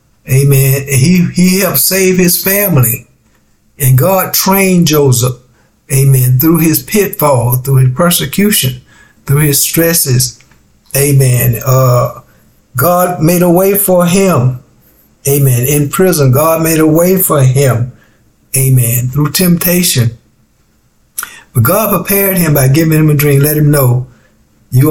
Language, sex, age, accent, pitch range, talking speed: English, male, 60-79, American, 125-160 Hz, 130 wpm